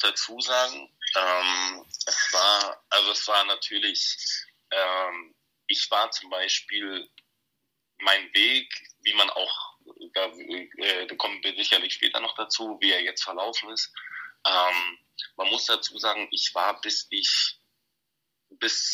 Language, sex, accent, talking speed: German, male, German, 135 wpm